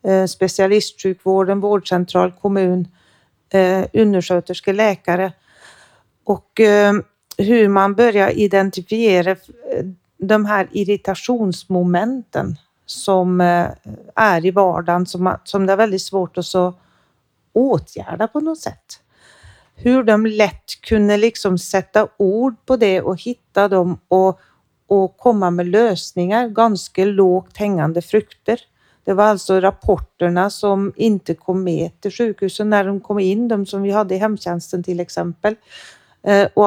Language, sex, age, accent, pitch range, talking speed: Swedish, female, 40-59, native, 185-215 Hz, 120 wpm